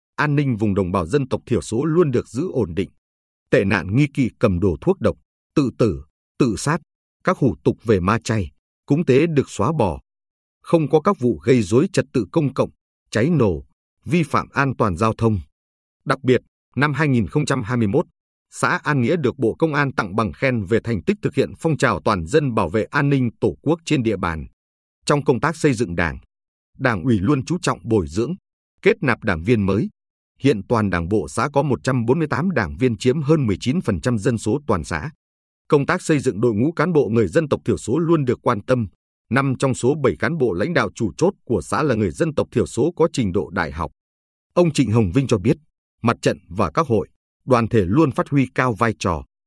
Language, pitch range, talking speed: Vietnamese, 95-145 Hz, 225 wpm